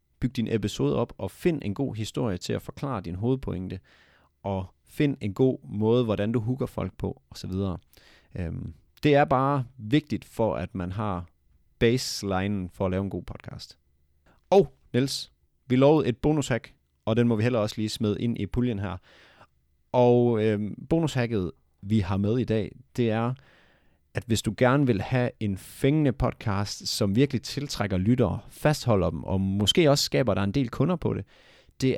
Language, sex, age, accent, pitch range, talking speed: Danish, male, 30-49, native, 95-130 Hz, 175 wpm